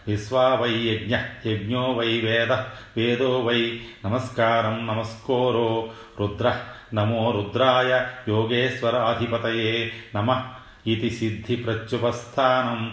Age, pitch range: 40-59, 110-125 Hz